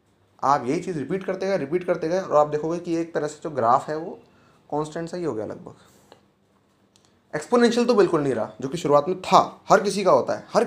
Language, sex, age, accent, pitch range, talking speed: Hindi, male, 20-39, native, 135-180 Hz, 235 wpm